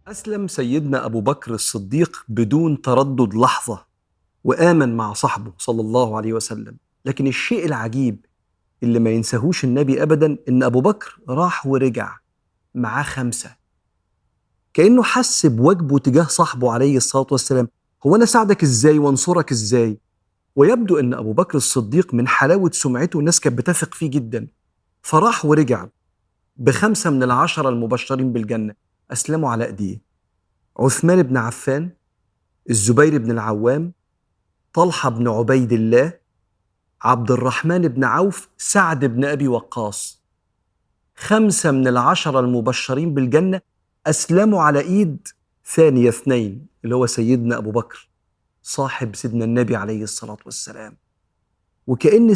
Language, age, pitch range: Arabic, 40-59, 115-155 Hz